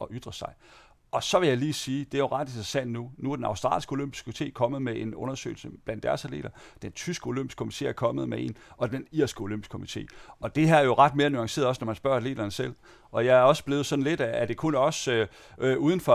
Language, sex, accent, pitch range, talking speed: Danish, male, native, 110-140 Hz, 270 wpm